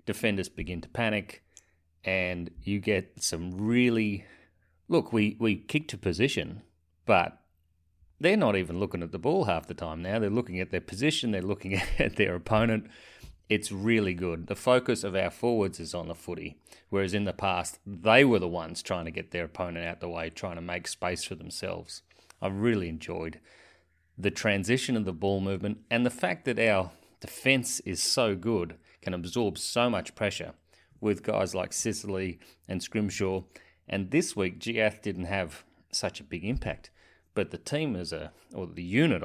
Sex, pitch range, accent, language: male, 85-115 Hz, Australian, English